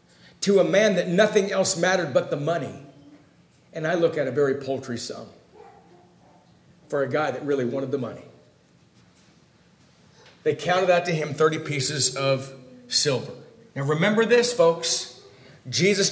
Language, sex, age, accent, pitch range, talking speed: English, male, 50-69, American, 165-240 Hz, 150 wpm